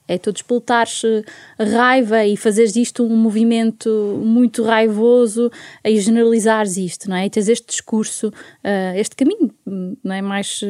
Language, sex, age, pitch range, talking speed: Portuguese, female, 20-39, 210-275 Hz, 145 wpm